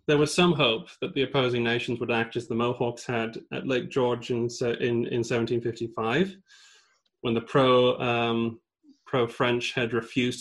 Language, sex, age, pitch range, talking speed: English, male, 30-49, 110-130 Hz, 160 wpm